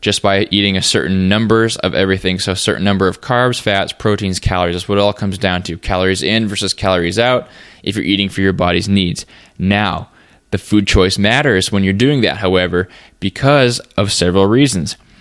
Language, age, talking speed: English, 20-39, 195 wpm